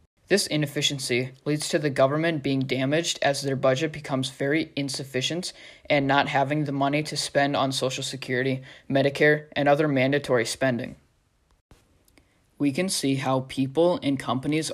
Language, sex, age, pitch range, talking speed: English, male, 20-39, 135-155 Hz, 145 wpm